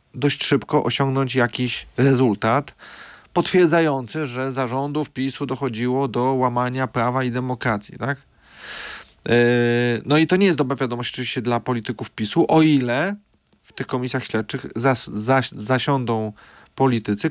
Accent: native